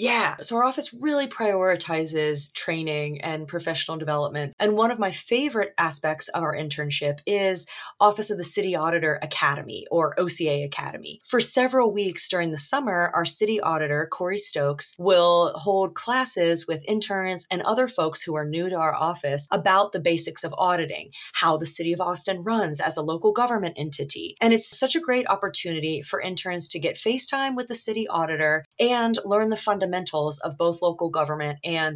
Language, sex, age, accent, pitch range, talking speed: English, female, 30-49, American, 160-220 Hz, 175 wpm